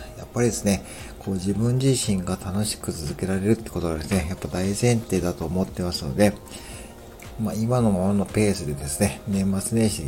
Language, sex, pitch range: Japanese, male, 90-110 Hz